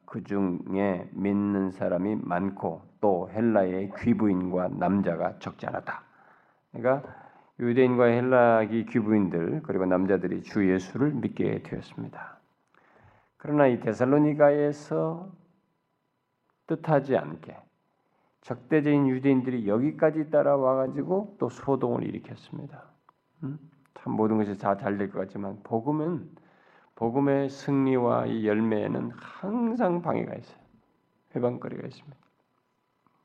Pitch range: 100-145 Hz